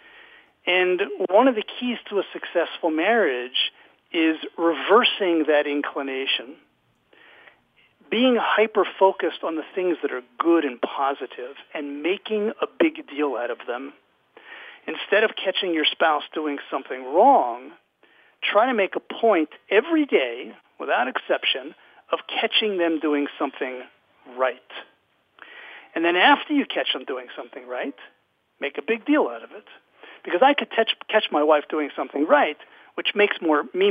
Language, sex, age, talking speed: English, male, 50-69, 145 wpm